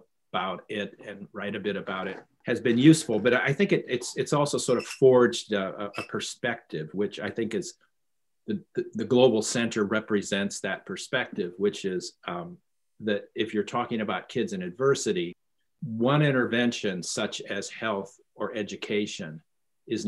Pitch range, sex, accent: 100-125 Hz, male, American